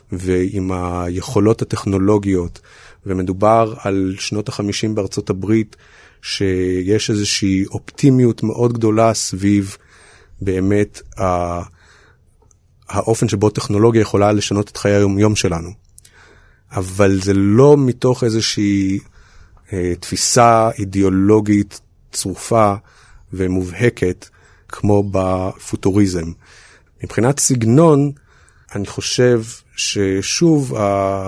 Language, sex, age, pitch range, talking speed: Hebrew, male, 30-49, 95-115 Hz, 80 wpm